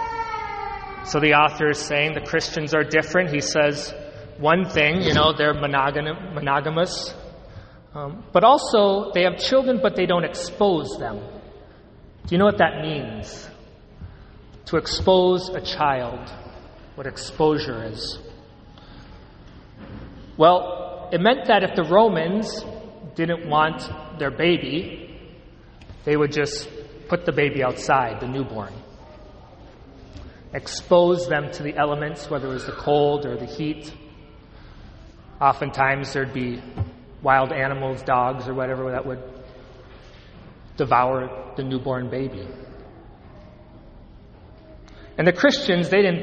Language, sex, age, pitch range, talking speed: English, male, 30-49, 135-175 Hz, 120 wpm